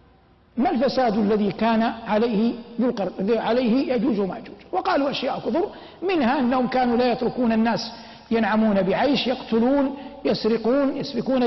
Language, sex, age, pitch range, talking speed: Arabic, male, 50-69, 230-275 Hz, 115 wpm